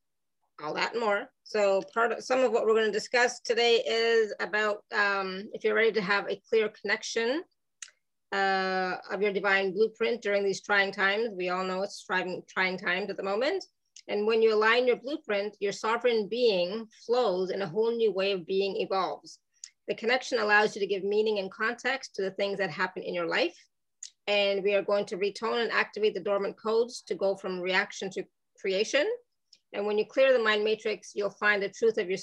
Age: 30-49